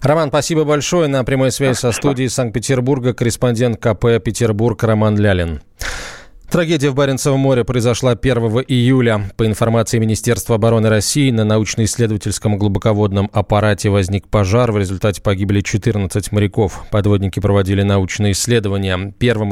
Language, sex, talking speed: Russian, male, 130 wpm